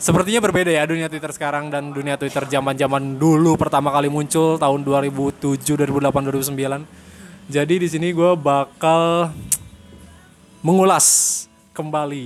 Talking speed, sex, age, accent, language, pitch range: 115 wpm, male, 20-39, native, Indonesian, 140-165 Hz